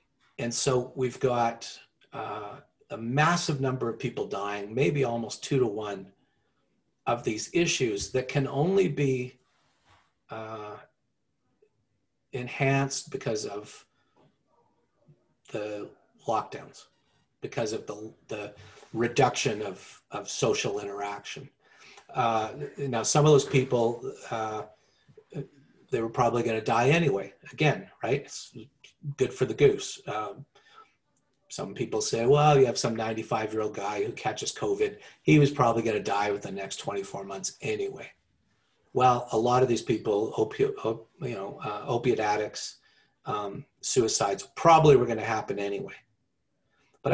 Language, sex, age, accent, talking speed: English, male, 40-59, American, 135 wpm